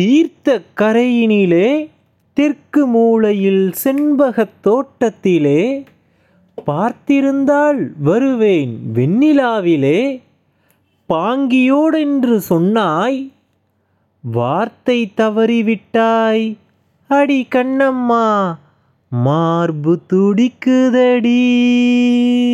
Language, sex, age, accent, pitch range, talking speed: Tamil, male, 30-49, native, 195-265 Hz, 45 wpm